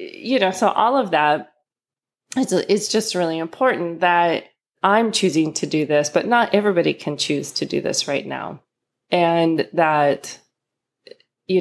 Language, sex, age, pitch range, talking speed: English, female, 20-39, 150-185 Hz, 145 wpm